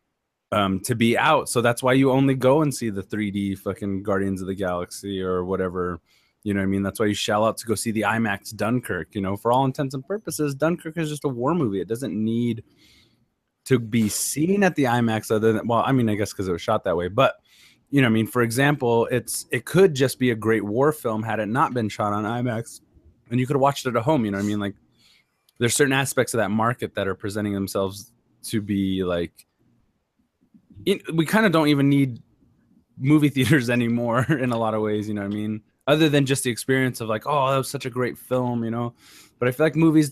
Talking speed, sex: 245 wpm, male